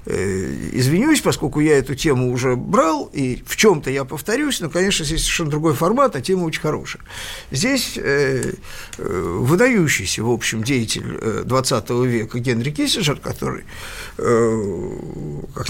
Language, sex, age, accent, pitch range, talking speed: Russian, male, 50-69, native, 135-215 Hz, 125 wpm